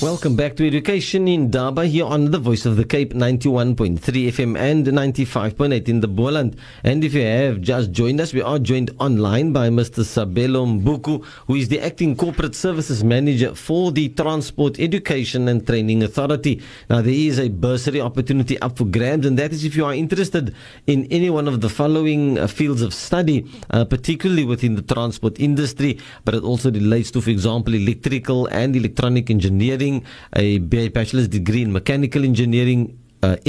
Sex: male